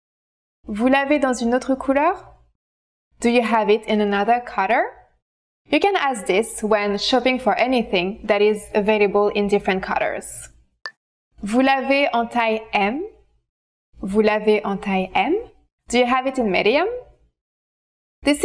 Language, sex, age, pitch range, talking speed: English, female, 20-39, 205-265 Hz, 145 wpm